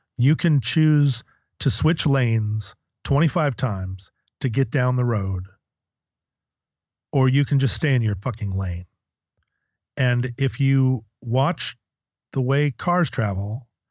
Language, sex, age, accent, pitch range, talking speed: English, male, 30-49, American, 110-135 Hz, 130 wpm